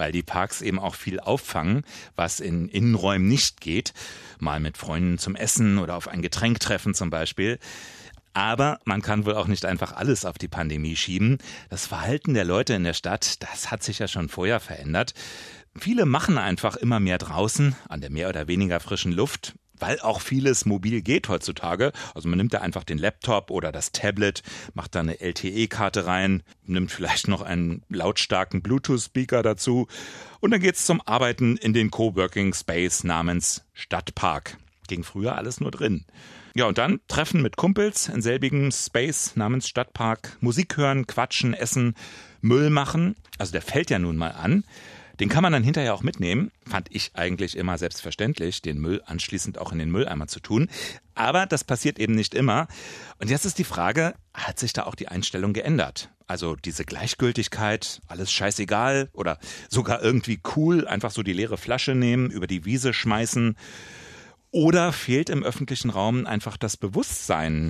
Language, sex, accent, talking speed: German, male, German, 175 wpm